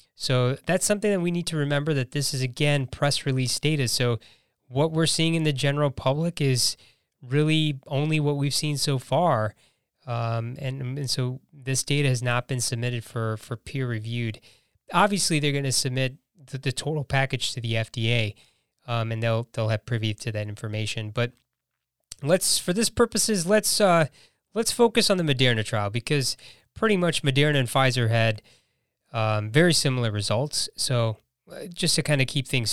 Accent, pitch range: American, 120-155 Hz